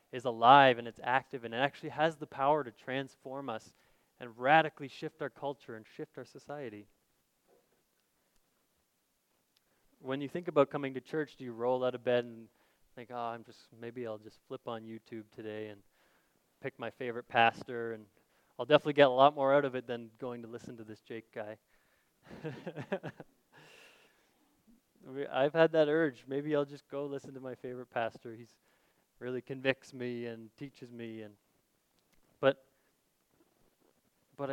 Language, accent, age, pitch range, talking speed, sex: English, American, 20-39, 115-140 Hz, 165 wpm, male